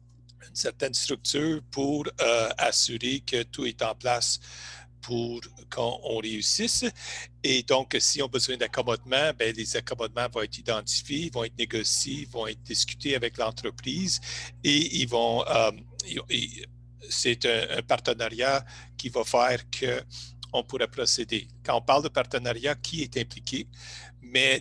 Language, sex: English, male